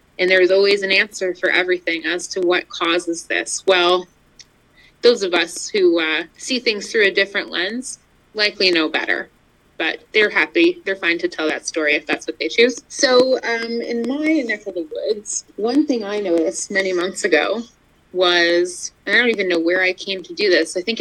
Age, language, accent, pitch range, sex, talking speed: 20-39, English, American, 180-255 Hz, female, 200 wpm